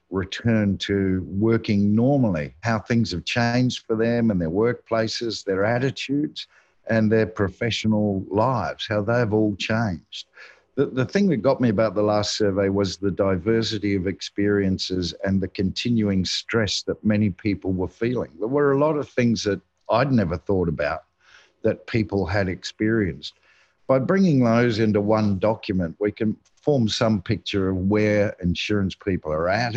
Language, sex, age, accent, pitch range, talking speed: English, male, 50-69, Australian, 95-115 Hz, 160 wpm